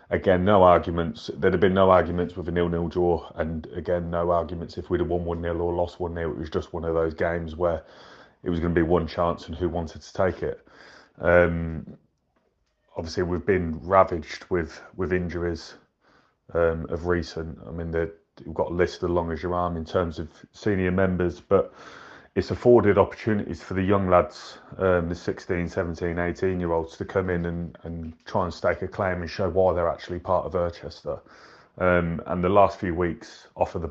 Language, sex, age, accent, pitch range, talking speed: English, male, 30-49, British, 85-90 Hz, 200 wpm